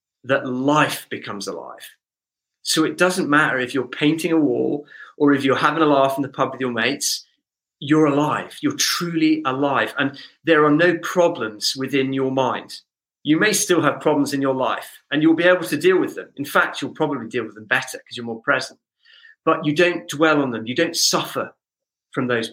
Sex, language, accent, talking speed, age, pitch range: male, English, British, 205 wpm, 40-59, 135-170 Hz